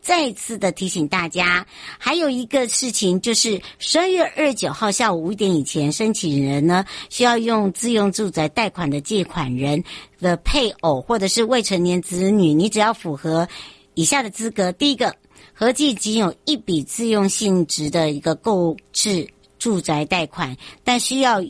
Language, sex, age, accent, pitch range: Chinese, male, 60-79, American, 165-230 Hz